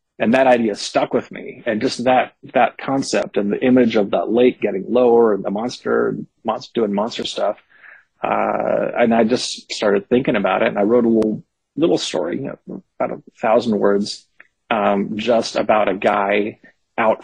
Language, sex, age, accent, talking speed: English, male, 30-49, American, 185 wpm